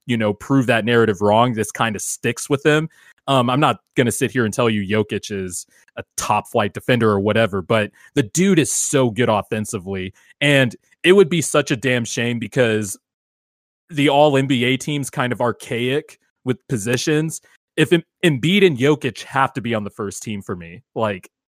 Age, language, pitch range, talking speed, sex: 20-39, English, 115-145 Hz, 195 wpm, male